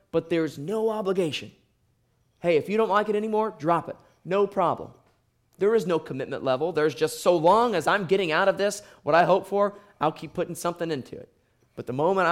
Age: 20-39